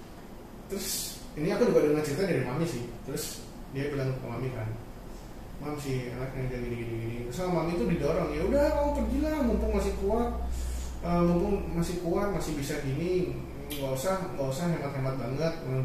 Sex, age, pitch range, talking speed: male, 20-39, 125-170 Hz, 185 wpm